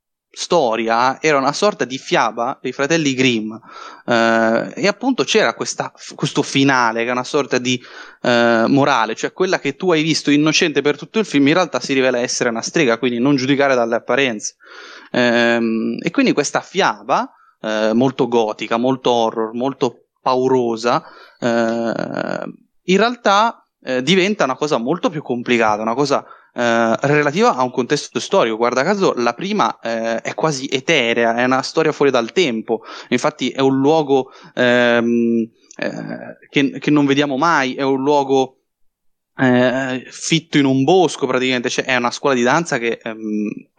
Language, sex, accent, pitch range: Italian, male, native, 115-145 Hz